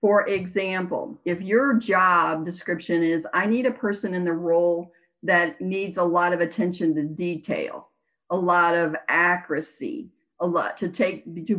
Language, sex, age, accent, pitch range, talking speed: English, female, 50-69, American, 170-205 Hz, 160 wpm